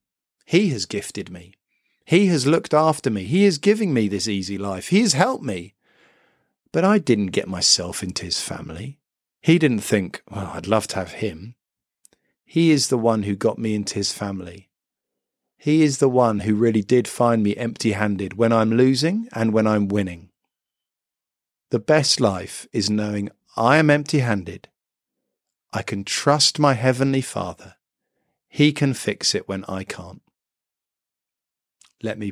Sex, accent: male, British